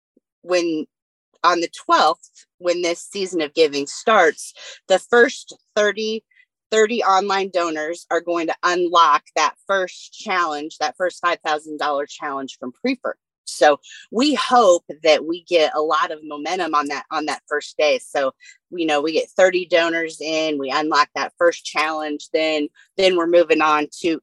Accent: American